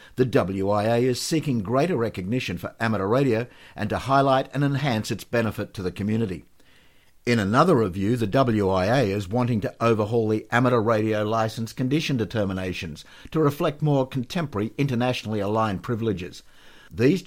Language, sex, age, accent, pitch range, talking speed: English, male, 60-79, Australian, 105-130 Hz, 145 wpm